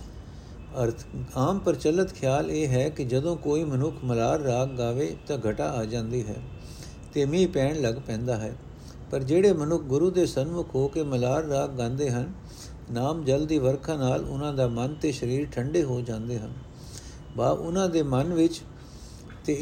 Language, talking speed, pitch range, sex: Punjabi, 170 wpm, 125-165 Hz, male